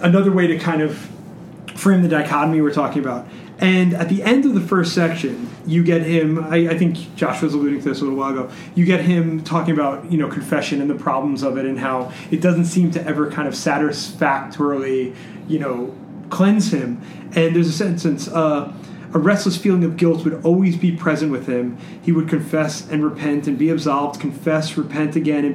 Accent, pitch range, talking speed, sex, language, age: American, 145-180 Hz, 210 wpm, male, English, 30-49